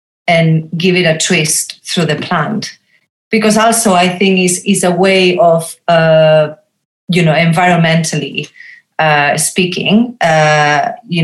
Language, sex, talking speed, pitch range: English, female, 135 wpm, 155-185 Hz